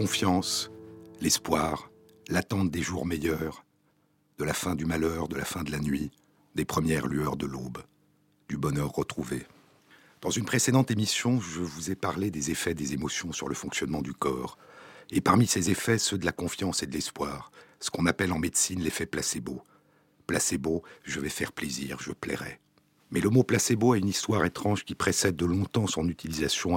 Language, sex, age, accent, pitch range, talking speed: French, male, 60-79, French, 85-105 Hz, 180 wpm